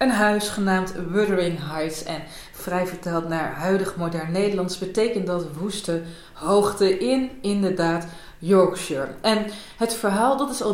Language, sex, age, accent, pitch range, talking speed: Dutch, female, 20-39, Dutch, 175-210 Hz, 140 wpm